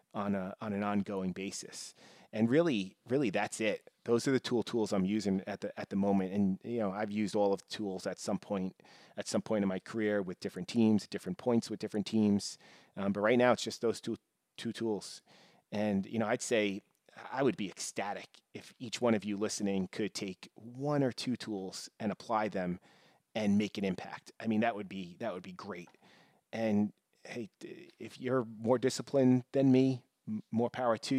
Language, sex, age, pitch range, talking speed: English, male, 30-49, 100-120 Hz, 210 wpm